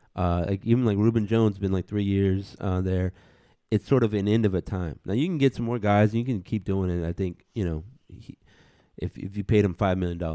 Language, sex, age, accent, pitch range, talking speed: English, male, 30-49, American, 90-110 Hz, 265 wpm